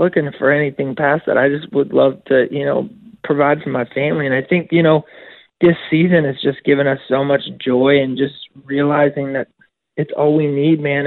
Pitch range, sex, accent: 140-165 Hz, male, American